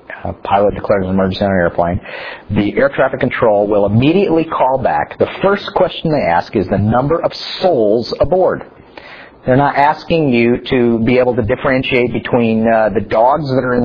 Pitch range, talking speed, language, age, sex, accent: 100-140 Hz, 185 wpm, English, 50-69, male, American